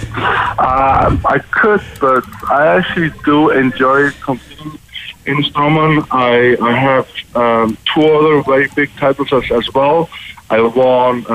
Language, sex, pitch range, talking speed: English, male, 110-130 Hz, 130 wpm